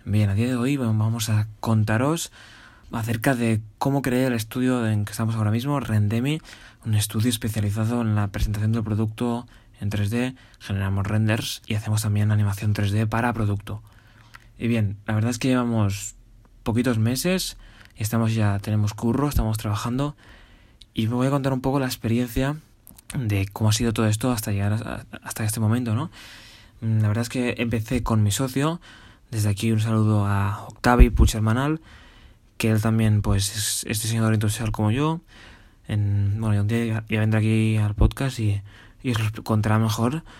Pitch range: 105-120 Hz